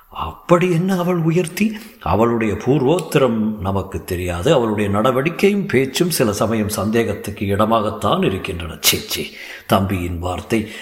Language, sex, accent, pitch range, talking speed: Tamil, male, native, 105-135 Hz, 105 wpm